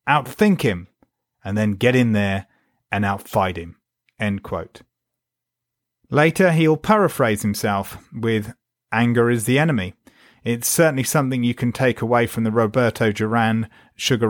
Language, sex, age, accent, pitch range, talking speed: English, male, 30-49, British, 110-135 Hz, 135 wpm